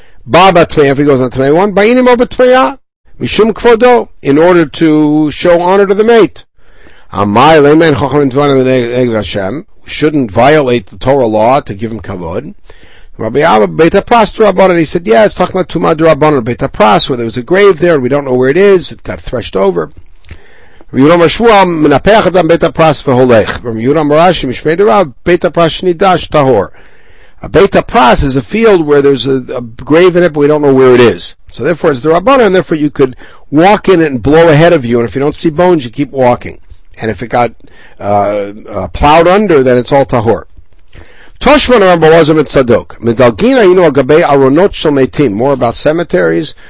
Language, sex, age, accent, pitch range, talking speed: English, male, 60-79, American, 125-180 Hz, 150 wpm